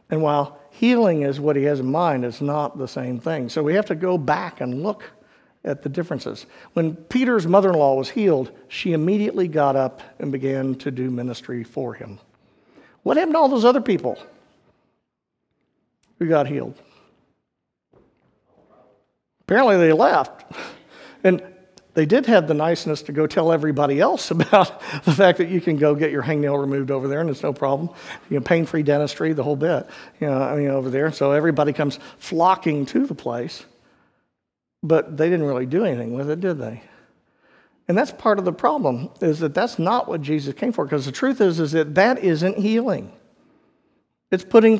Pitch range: 145-195 Hz